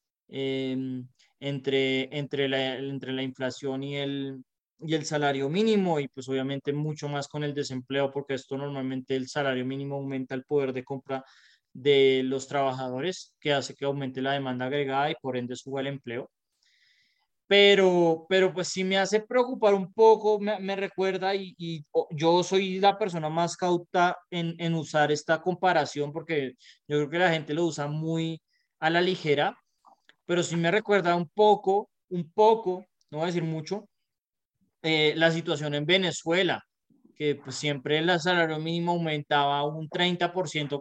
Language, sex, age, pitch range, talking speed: Spanish, male, 20-39, 140-180 Hz, 165 wpm